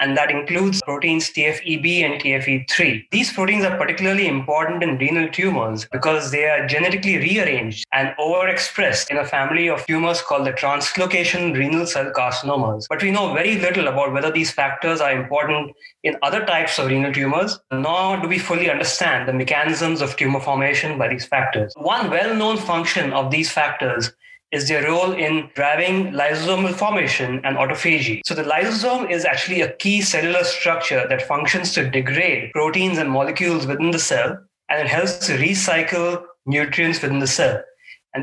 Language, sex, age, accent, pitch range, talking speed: English, male, 20-39, Indian, 140-180 Hz, 170 wpm